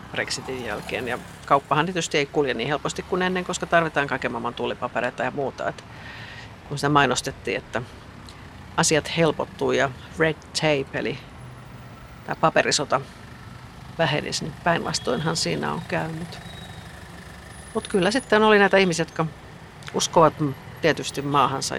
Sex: female